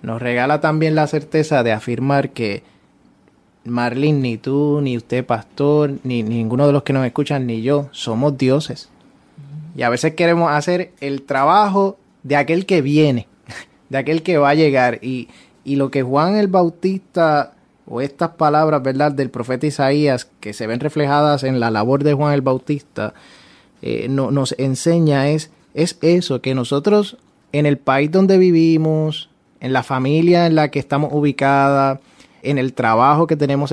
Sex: male